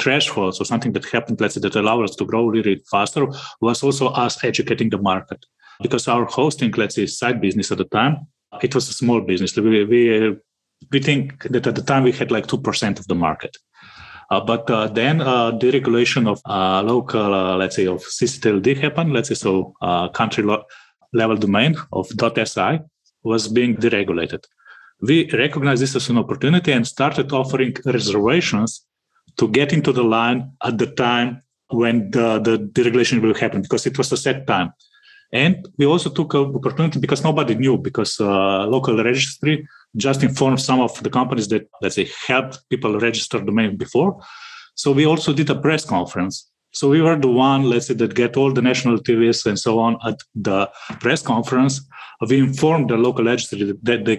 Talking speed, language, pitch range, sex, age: 185 wpm, English, 115-140 Hz, male, 30-49